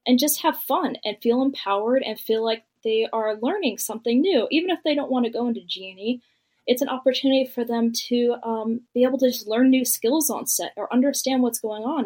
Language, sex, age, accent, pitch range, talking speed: English, female, 10-29, American, 215-260 Hz, 225 wpm